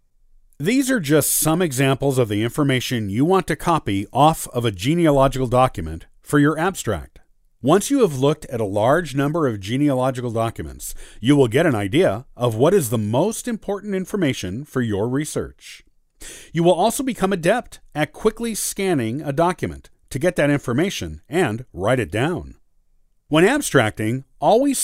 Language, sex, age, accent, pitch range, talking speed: English, male, 50-69, American, 115-170 Hz, 160 wpm